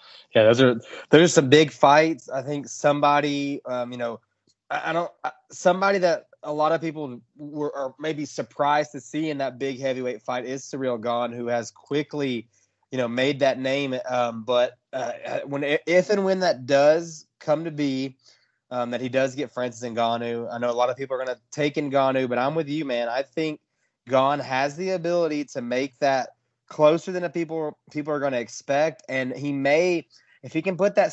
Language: English